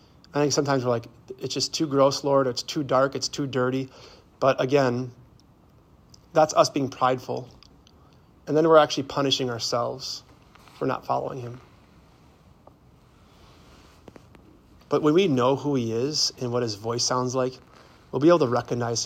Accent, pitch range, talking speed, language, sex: American, 120-145 Hz, 155 wpm, English, male